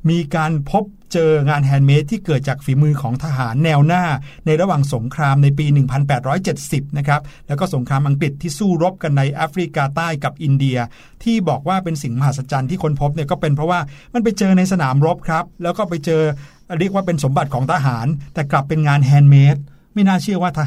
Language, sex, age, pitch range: Thai, male, 60-79, 140-160 Hz